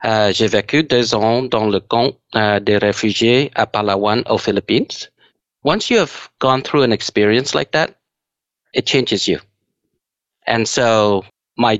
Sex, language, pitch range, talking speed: male, English, 105-120 Hz, 155 wpm